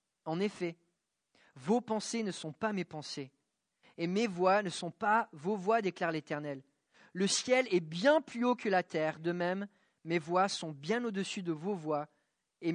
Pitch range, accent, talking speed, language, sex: 160-205 Hz, French, 190 wpm, English, male